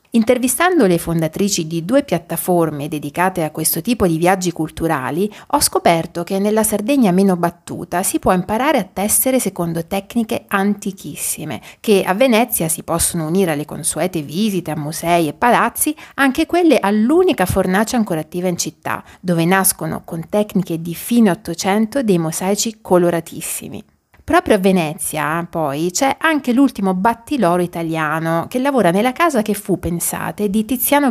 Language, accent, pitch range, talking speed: Italian, native, 170-230 Hz, 150 wpm